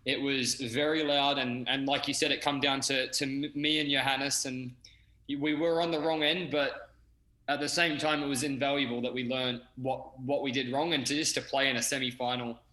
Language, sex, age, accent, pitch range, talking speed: English, male, 20-39, Australian, 125-150 Hz, 225 wpm